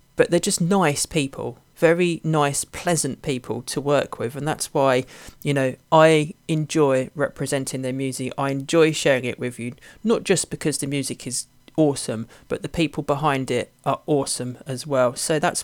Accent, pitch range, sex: British, 130-155 Hz, male